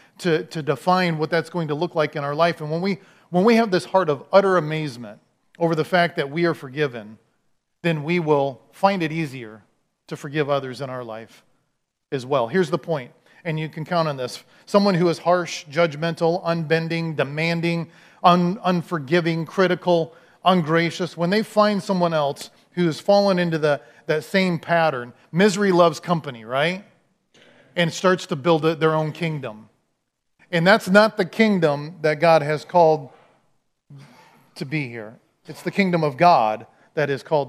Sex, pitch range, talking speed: male, 150-180 Hz, 175 wpm